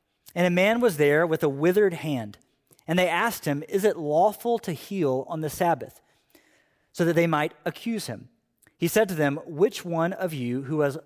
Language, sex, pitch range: English, male, 155-205 Hz